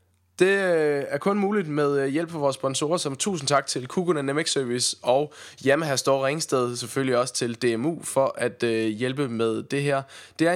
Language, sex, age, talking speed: Danish, male, 20-39, 190 wpm